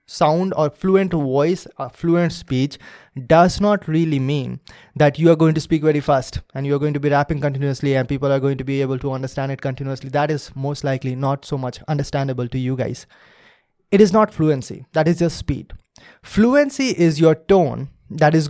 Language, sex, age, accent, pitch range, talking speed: English, male, 20-39, Indian, 140-170 Hz, 205 wpm